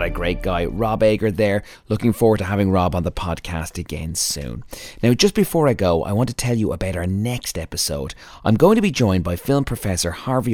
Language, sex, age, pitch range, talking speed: English, male, 30-49, 85-110 Hz, 220 wpm